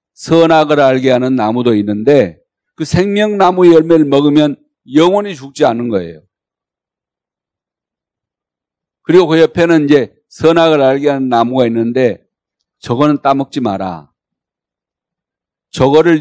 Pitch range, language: 120-155 Hz, Korean